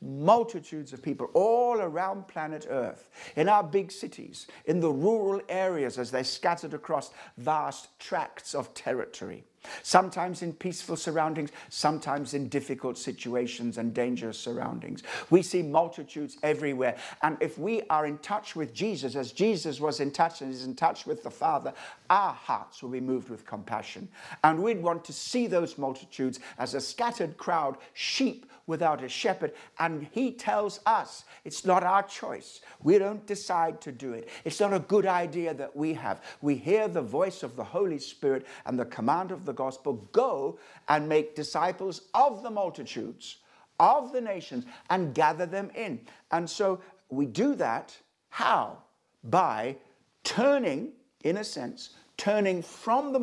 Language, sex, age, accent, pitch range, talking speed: English, male, 60-79, British, 140-200 Hz, 160 wpm